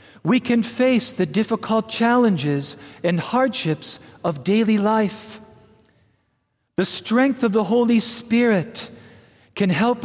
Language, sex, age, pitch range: English, male, 50-69, 125-210 Hz